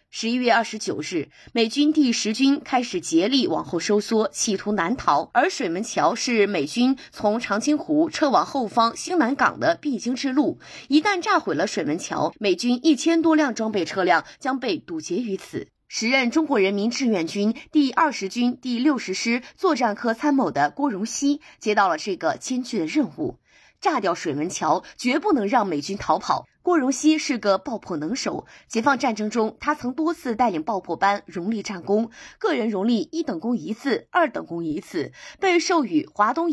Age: 20-39